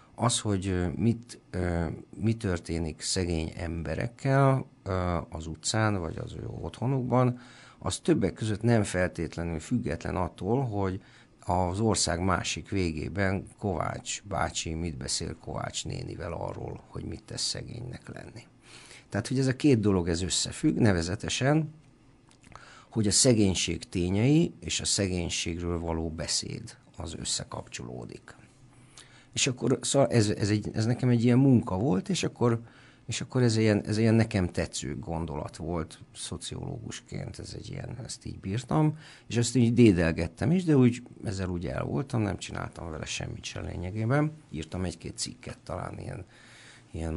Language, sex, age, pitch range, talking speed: Hungarian, male, 50-69, 85-125 Hz, 140 wpm